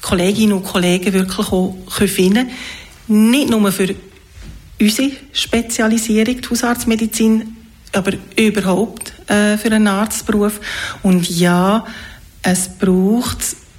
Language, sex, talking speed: German, female, 100 wpm